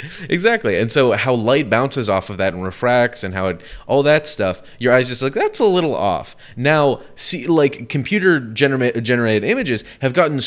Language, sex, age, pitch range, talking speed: English, male, 20-39, 110-165 Hz, 195 wpm